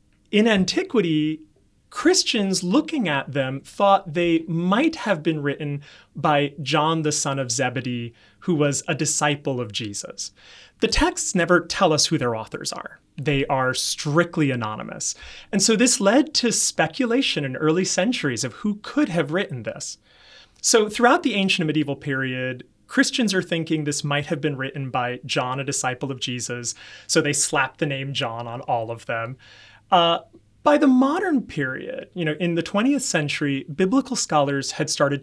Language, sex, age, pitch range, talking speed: English, male, 30-49, 140-200 Hz, 165 wpm